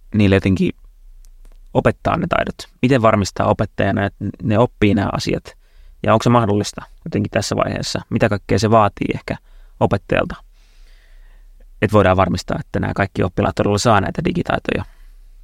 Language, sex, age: Finnish, male, 30-49